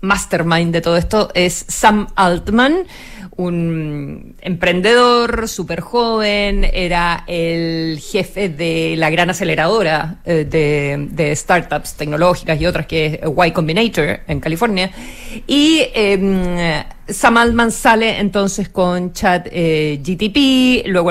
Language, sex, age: Spanish, female, 40-59